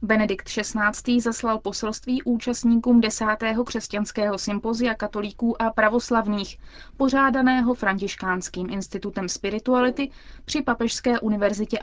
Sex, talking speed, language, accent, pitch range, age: female, 90 wpm, Czech, native, 205-240 Hz, 20-39